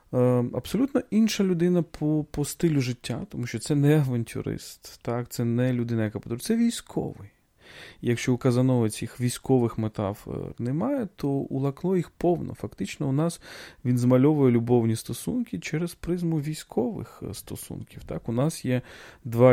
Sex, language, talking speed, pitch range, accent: male, Ukrainian, 145 wpm, 110-155 Hz, native